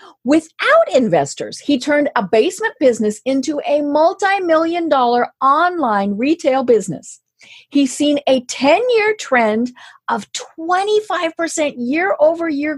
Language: English